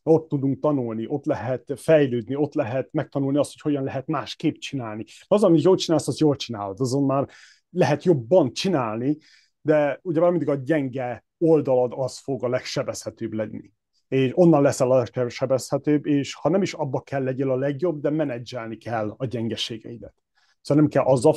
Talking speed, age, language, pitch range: 170 wpm, 30-49, Hungarian, 120-160 Hz